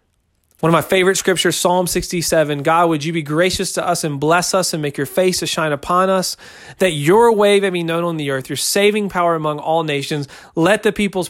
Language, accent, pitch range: English, American, 150-185 Hz